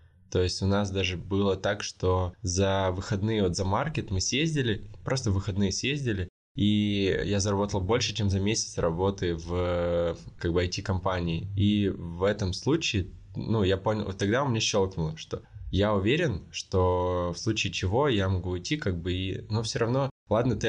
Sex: male